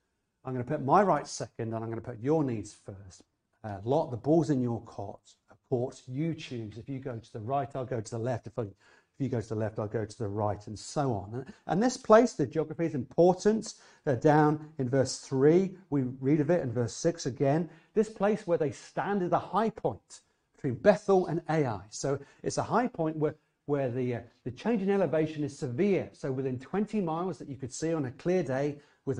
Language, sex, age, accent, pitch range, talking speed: English, male, 40-59, British, 130-180 Hz, 235 wpm